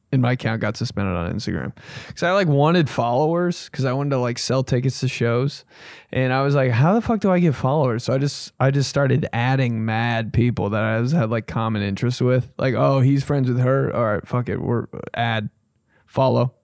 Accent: American